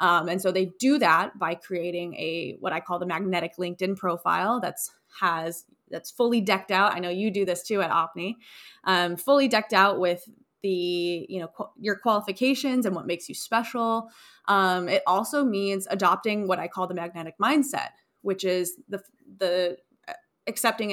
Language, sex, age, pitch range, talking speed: English, female, 20-39, 180-225 Hz, 180 wpm